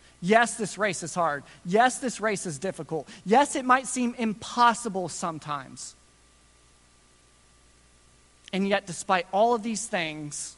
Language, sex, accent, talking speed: English, male, American, 130 wpm